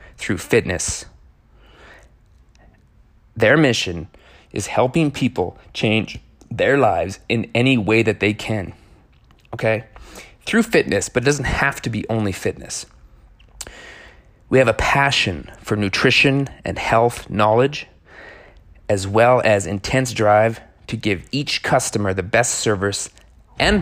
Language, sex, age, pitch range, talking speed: English, male, 30-49, 95-115 Hz, 125 wpm